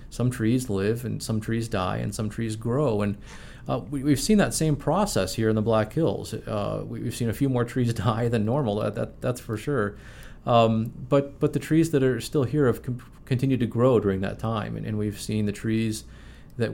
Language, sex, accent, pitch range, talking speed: English, male, American, 105-125 Hz, 230 wpm